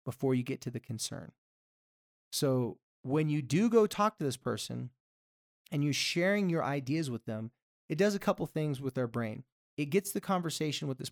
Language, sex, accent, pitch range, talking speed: English, male, American, 125-185 Hz, 200 wpm